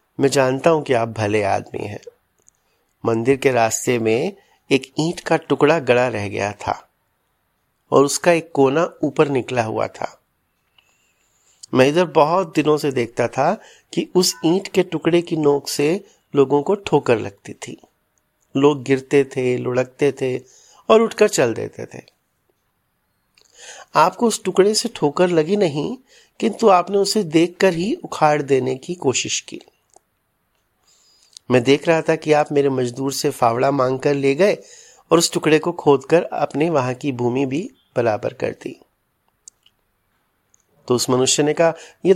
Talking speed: 150 wpm